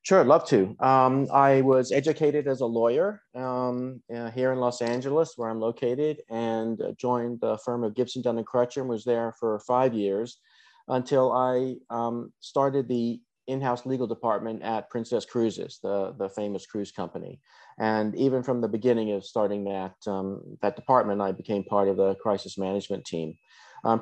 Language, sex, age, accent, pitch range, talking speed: English, male, 40-59, American, 105-125 Hz, 170 wpm